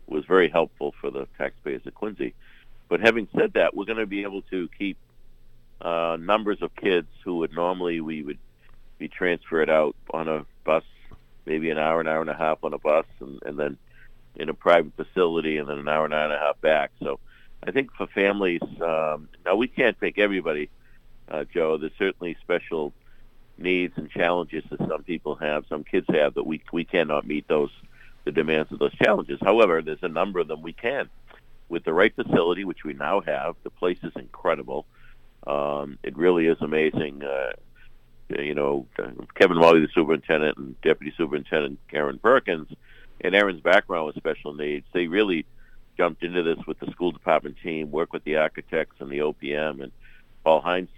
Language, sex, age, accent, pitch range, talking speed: English, male, 60-79, American, 75-85 Hz, 190 wpm